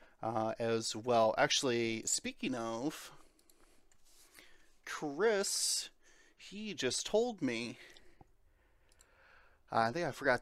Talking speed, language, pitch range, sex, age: 90 wpm, English, 115-140 Hz, male, 30-49